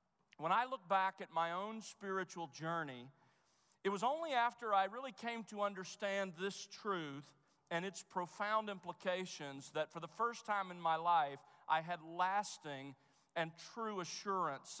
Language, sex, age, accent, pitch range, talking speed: English, male, 40-59, American, 160-205 Hz, 155 wpm